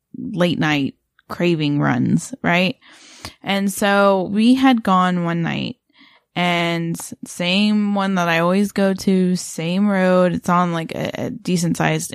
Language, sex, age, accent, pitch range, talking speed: English, female, 10-29, American, 175-225 Hz, 145 wpm